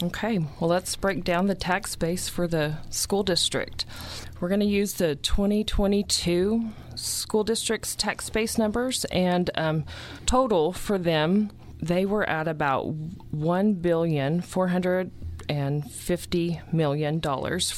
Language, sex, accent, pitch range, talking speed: English, female, American, 150-185 Hz, 110 wpm